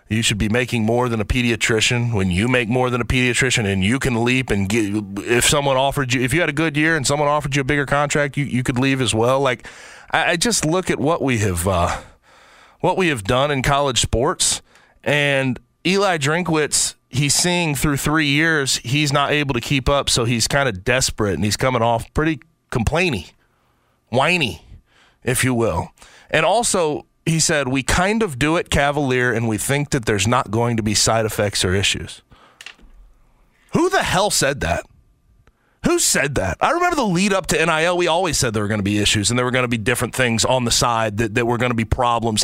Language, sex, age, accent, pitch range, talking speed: English, male, 30-49, American, 115-145 Hz, 220 wpm